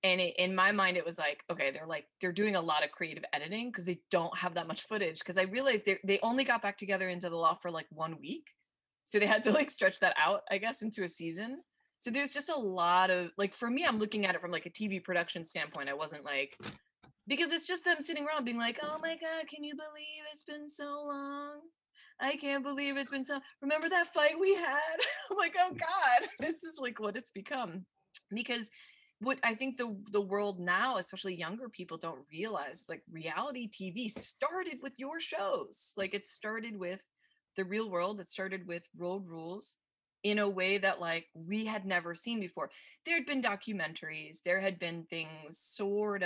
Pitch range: 180-285 Hz